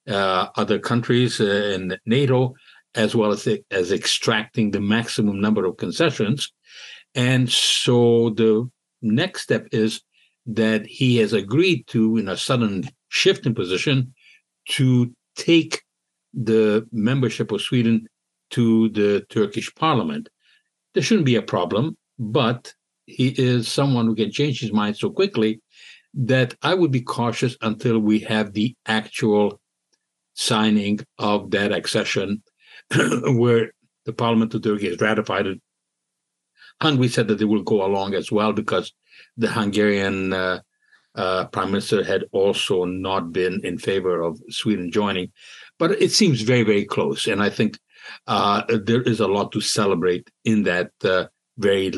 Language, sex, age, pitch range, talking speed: English, male, 60-79, 105-130 Hz, 145 wpm